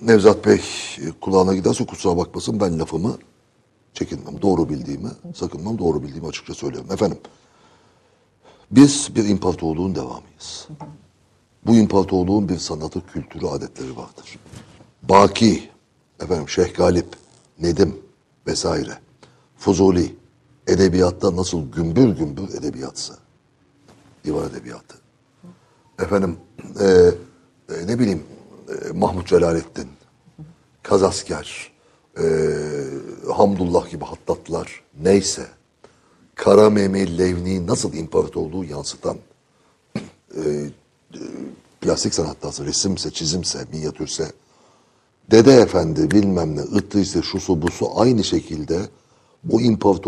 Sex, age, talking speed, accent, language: male, 60-79, 95 wpm, native, Turkish